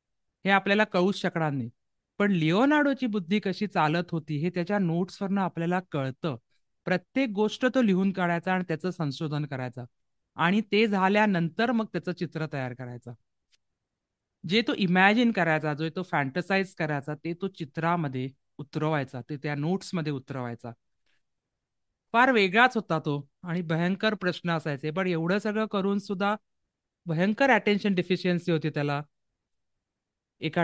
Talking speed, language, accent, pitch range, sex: 135 wpm, Marathi, native, 145-185 Hz, male